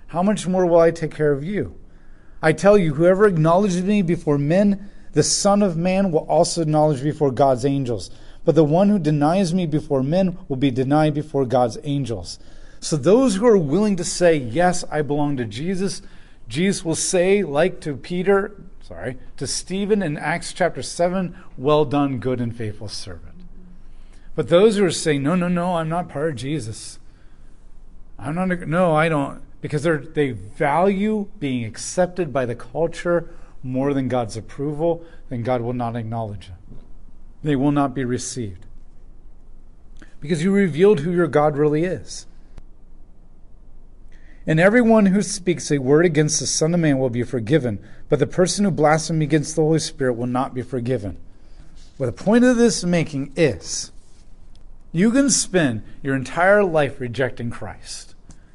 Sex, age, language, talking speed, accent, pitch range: male, 40-59, English, 170 wpm, American, 125-180 Hz